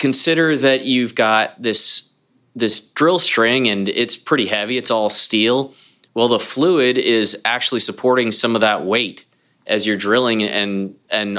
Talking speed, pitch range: 160 wpm, 105-130 Hz